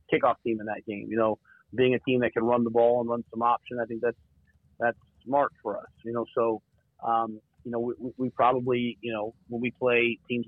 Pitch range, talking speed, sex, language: 115-120 Hz, 235 wpm, male, English